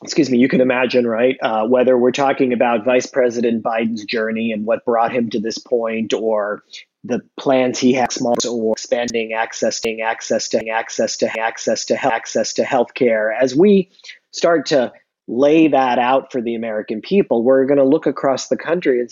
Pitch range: 120-135 Hz